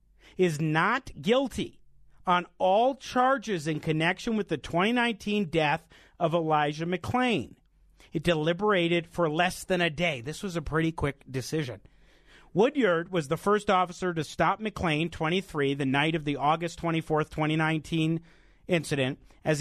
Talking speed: 140 wpm